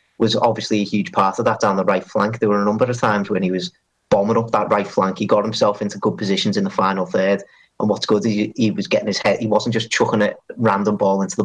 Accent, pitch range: British, 95-110 Hz